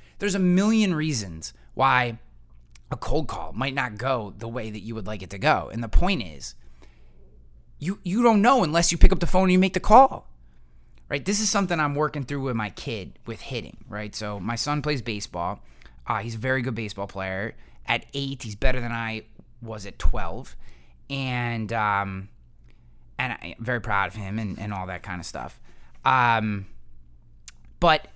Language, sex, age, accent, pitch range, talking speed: English, male, 20-39, American, 105-155 Hz, 190 wpm